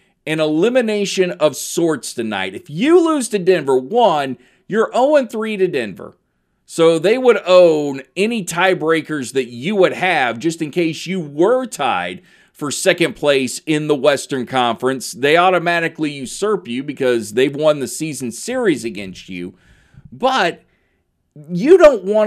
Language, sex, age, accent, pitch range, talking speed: English, male, 40-59, American, 130-190 Hz, 145 wpm